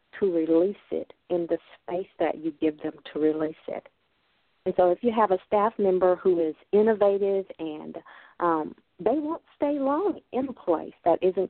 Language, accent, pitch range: English, American, 160-220 Hz